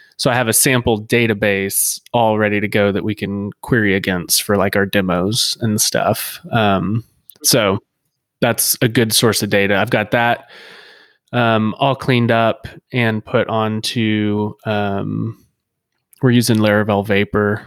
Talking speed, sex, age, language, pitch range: 150 wpm, male, 20-39, English, 105-120 Hz